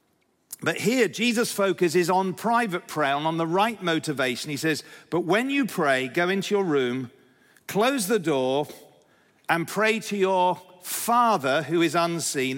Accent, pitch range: British, 160-200 Hz